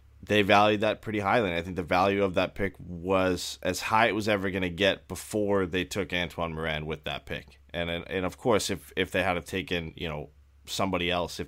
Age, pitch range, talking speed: 20-39, 85-95 Hz, 230 wpm